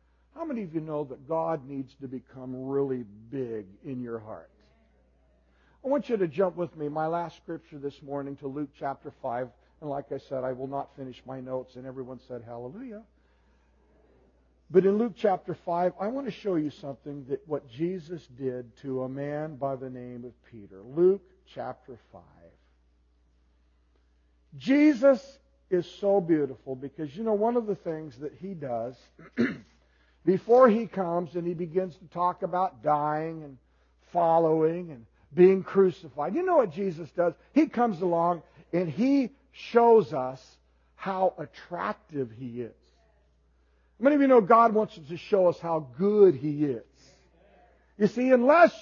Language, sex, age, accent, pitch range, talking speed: English, male, 50-69, American, 125-195 Hz, 165 wpm